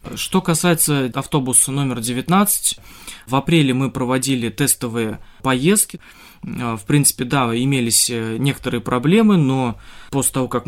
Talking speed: 120 wpm